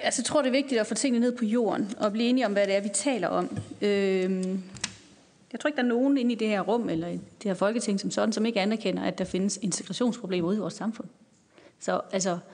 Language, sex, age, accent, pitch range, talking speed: Danish, female, 30-49, native, 200-250 Hz, 260 wpm